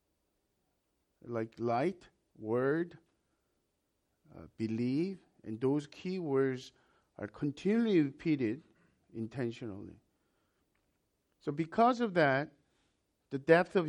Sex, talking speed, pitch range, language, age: male, 85 wpm, 120-165 Hz, English, 50-69